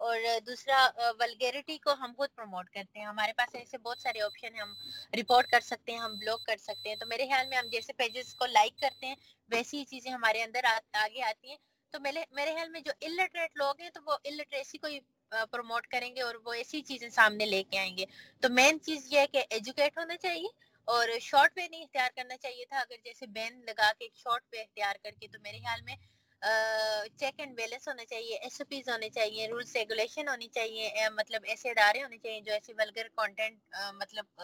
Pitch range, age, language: 220-275 Hz, 20-39, Urdu